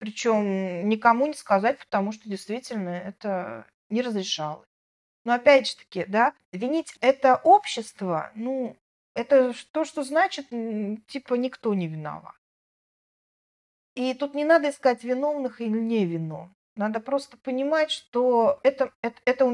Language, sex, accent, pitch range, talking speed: Russian, female, native, 200-265 Hz, 135 wpm